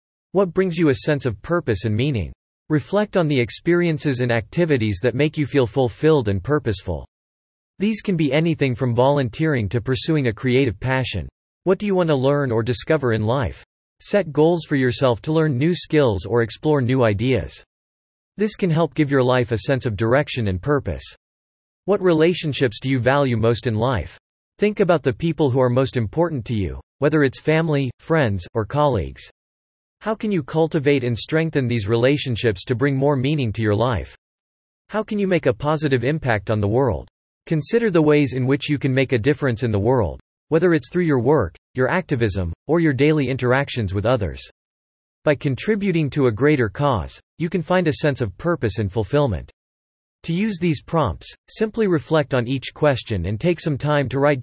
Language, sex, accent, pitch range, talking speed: English, male, American, 110-155 Hz, 190 wpm